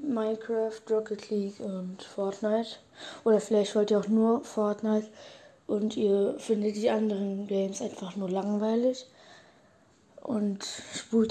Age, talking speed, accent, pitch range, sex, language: 20-39, 120 wpm, German, 205-235 Hz, female, German